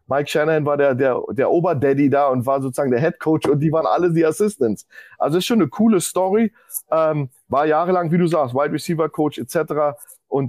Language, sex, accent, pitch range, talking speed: German, male, German, 130-160 Hz, 200 wpm